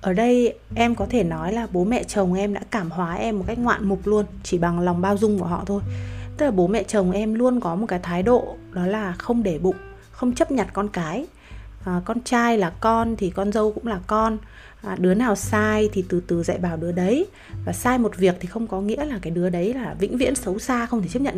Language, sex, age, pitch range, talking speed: Vietnamese, female, 20-39, 180-235 Hz, 255 wpm